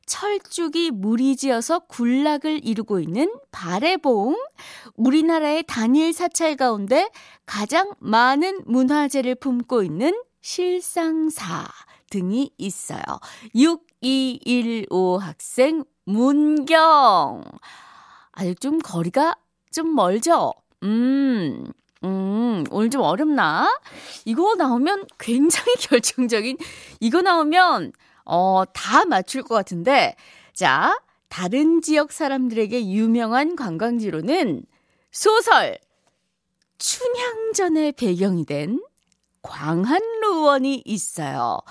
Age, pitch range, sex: 20-39, 230-330 Hz, female